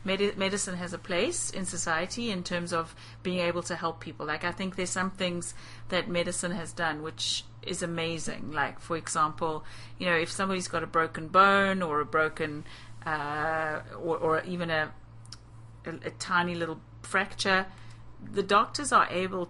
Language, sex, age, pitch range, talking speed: English, female, 40-59, 145-175 Hz, 170 wpm